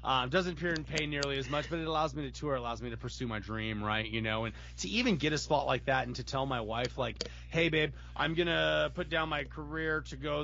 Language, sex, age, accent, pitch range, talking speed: English, male, 30-49, American, 115-150 Hz, 280 wpm